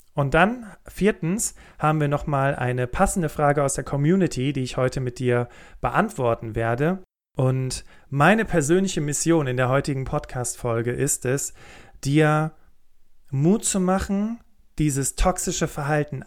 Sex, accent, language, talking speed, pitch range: male, German, German, 135 wpm, 130-165 Hz